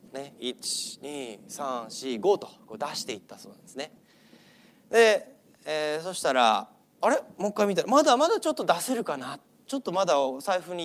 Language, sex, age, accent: Japanese, male, 30-49, native